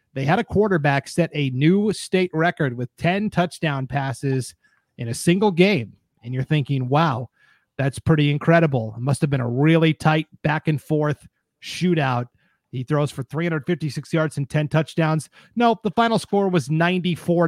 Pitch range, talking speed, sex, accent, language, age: 145-185 Hz, 170 wpm, male, American, English, 30-49